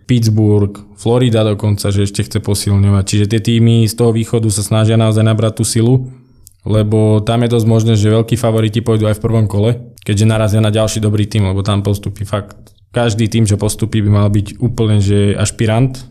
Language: Slovak